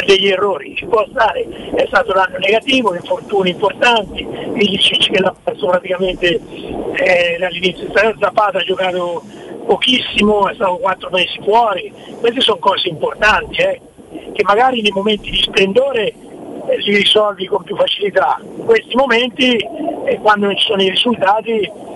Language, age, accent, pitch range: Italian, 50-69, native, 195-255 Hz